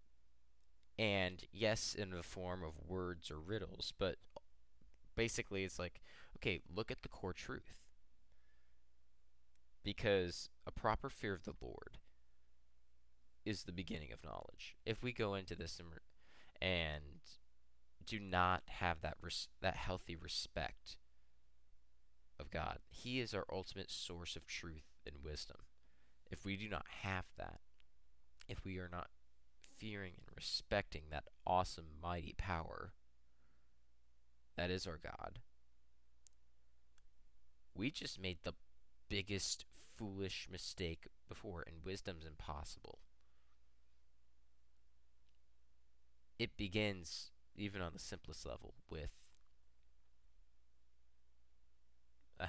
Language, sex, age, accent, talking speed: English, male, 20-39, American, 110 wpm